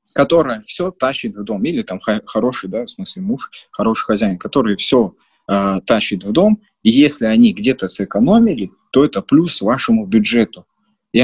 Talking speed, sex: 160 wpm, male